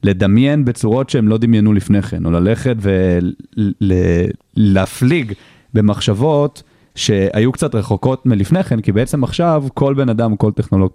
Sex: male